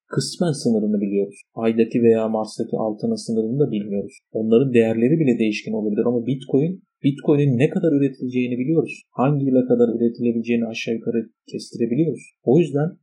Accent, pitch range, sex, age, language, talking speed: native, 110-125 Hz, male, 40-59, Turkish, 145 wpm